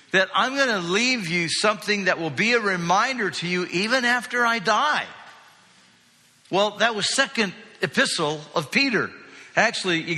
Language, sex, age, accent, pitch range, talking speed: English, male, 60-79, American, 170-220 Hz, 160 wpm